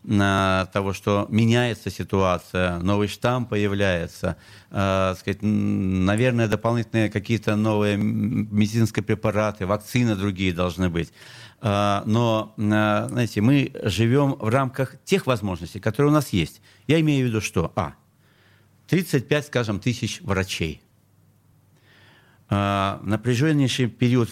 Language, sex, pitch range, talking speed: Russian, male, 100-125 Hz, 105 wpm